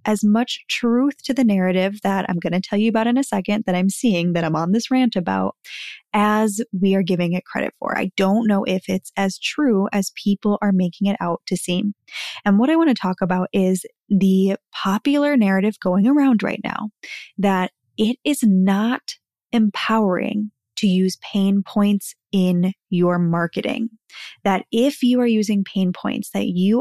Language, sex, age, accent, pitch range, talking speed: English, female, 10-29, American, 190-230 Hz, 185 wpm